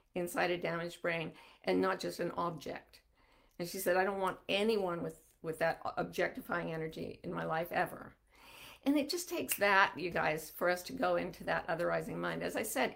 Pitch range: 180-255 Hz